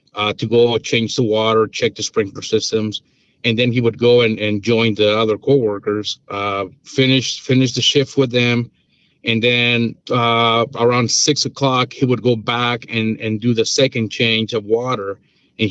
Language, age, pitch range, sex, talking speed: English, 40-59, 110-130 Hz, male, 180 wpm